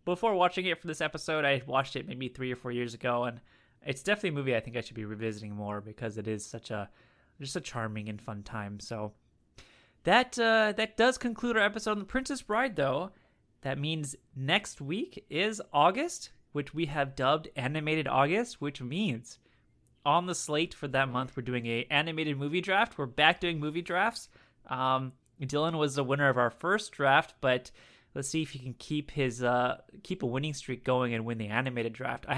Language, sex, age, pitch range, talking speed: English, male, 20-39, 120-170 Hz, 205 wpm